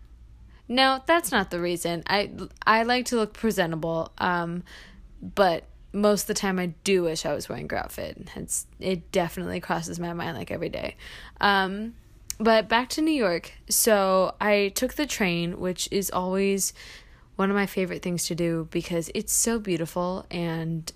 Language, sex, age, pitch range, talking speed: English, female, 20-39, 170-210 Hz, 170 wpm